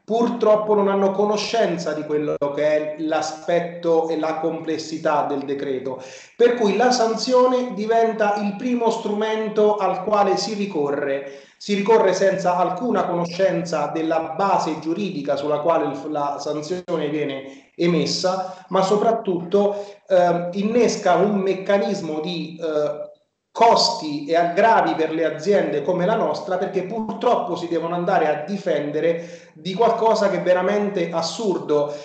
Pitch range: 165-205 Hz